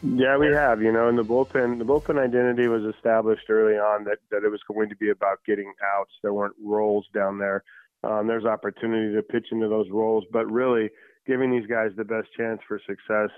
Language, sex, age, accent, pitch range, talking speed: English, male, 30-49, American, 105-115 Hz, 220 wpm